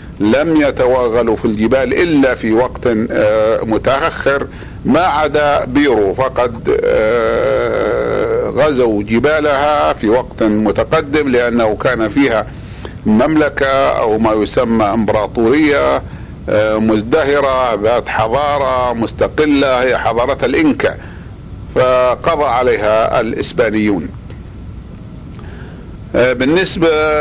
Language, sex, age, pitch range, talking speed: Arabic, male, 50-69, 110-150 Hz, 80 wpm